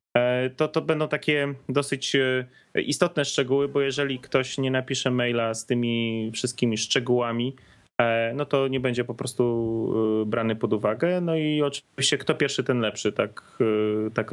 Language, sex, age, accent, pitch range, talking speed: Polish, male, 30-49, native, 110-135 Hz, 145 wpm